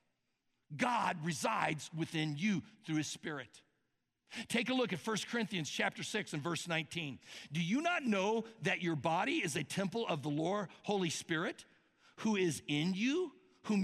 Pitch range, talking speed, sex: 170-245 Hz, 165 wpm, male